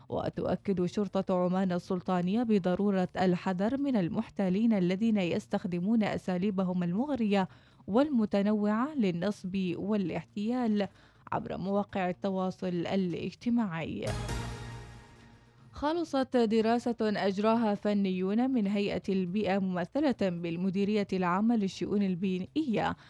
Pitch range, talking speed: 185-215 Hz, 80 wpm